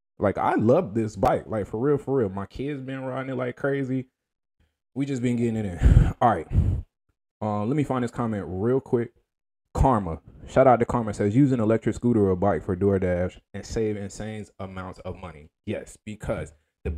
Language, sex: English, male